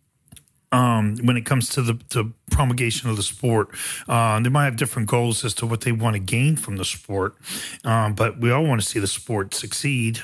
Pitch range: 105-125 Hz